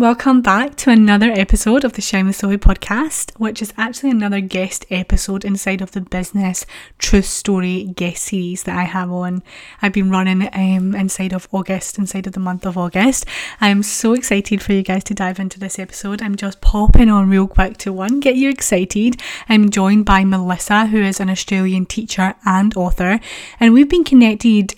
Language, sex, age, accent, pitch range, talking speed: English, female, 20-39, British, 185-205 Hz, 190 wpm